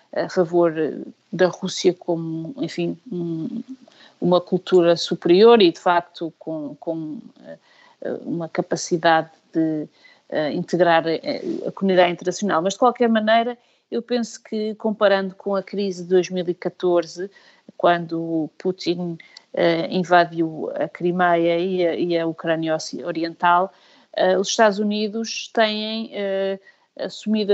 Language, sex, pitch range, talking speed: Portuguese, female, 170-195 Hz, 120 wpm